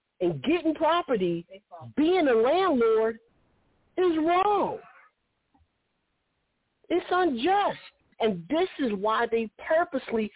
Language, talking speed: English, 95 wpm